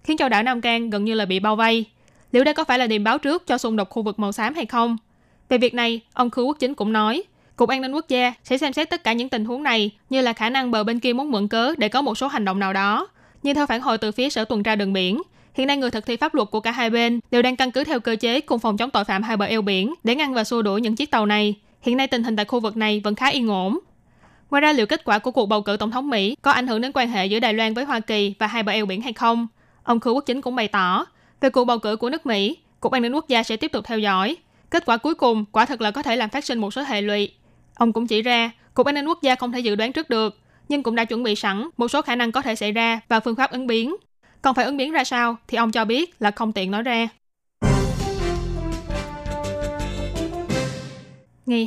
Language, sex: Vietnamese, female